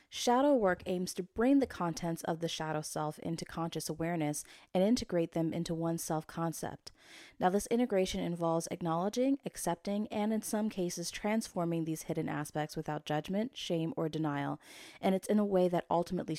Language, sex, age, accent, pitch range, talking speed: English, female, 20-39, American, 160-195 Hz, 170 wpm